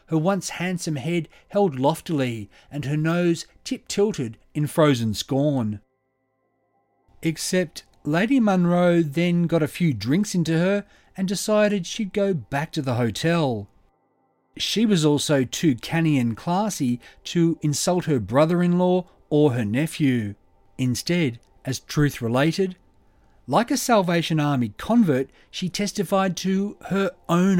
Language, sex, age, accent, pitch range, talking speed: English, male, 40-59, Australian, 130-180 Hz, 130 wpm